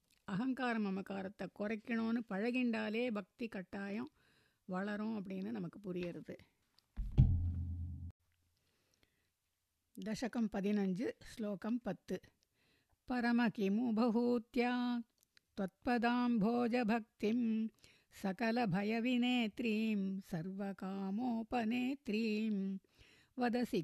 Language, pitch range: Tamil, 195-240 Hz